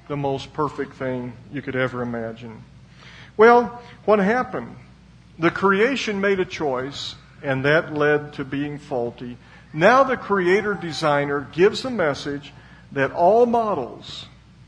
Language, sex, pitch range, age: English, male, 135-185 Hz, 50-69